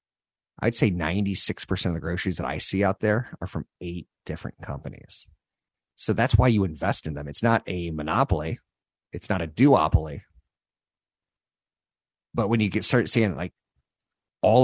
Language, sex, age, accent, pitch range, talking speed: English, male, 50-69, American, 85-110 Hz, 160 wpm